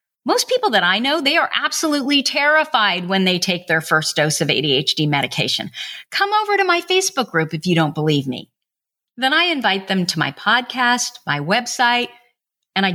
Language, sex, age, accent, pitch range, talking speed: English, female, 40-59, American, 180-275 Hz, 185 wpm